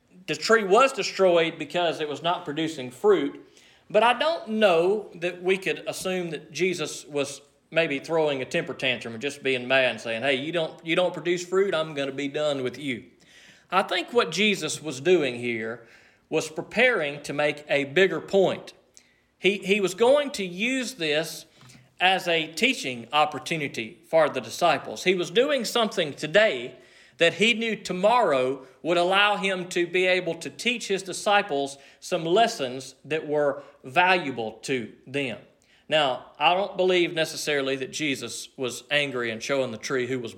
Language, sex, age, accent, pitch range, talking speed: English, male, 40-59, American, 135-185 Hz, 170 wpm